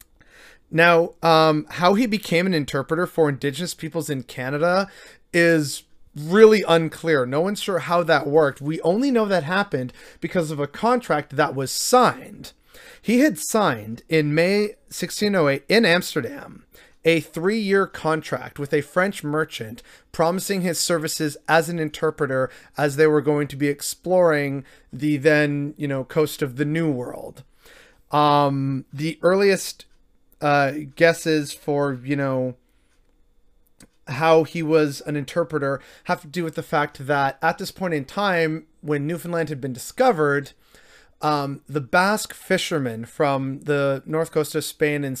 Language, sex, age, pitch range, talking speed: English, male, 30-49, 140-170 Hz, 145 wpm